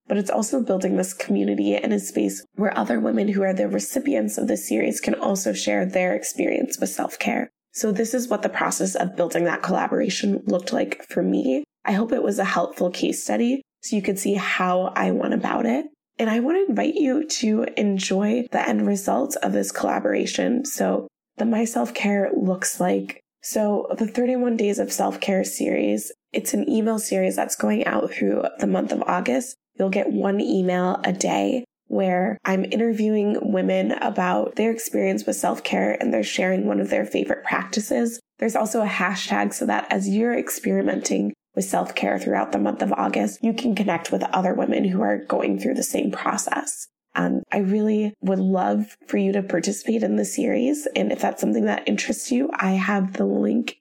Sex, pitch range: female, 180-245 Hz